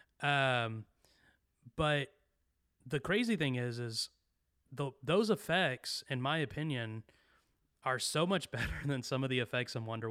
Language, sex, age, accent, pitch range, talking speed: English, male, 20-39, American, 110-135 Hz, 140 wpm